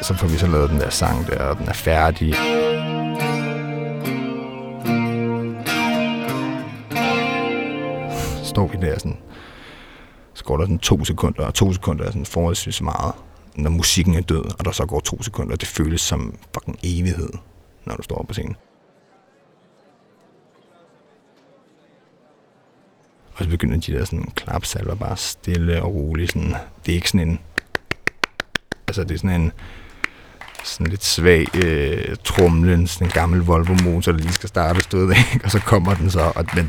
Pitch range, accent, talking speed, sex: 80-100 Hz, native, 155 wpm, male